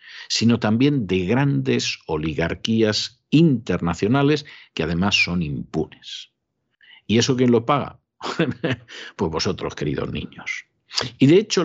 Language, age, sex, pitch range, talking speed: Spanish, 50-69, male, 105-135 Hz, 115 wpm